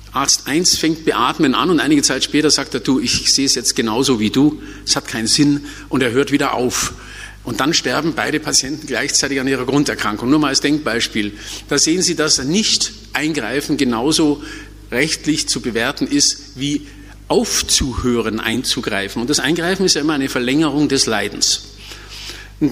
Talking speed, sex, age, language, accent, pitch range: 170 wpm, male, 50-69, German, German, 115-155 Hz